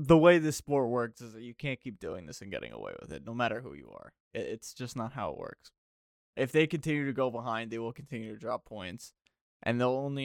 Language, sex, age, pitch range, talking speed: English, male, 20-39, 115-135 Hz, 250 wpm